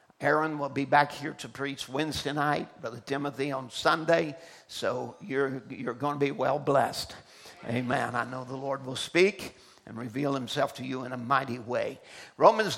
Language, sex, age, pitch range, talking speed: English, male, 50-69, 135-170 Hz, 180 wpm